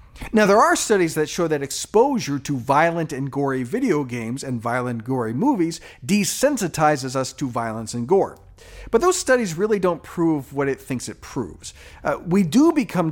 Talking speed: 180 wpm